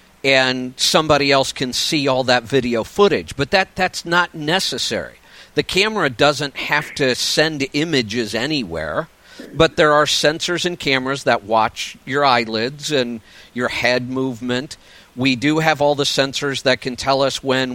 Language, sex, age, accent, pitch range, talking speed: English, male, 50-69, American, 125-155 Hz, 160 wpm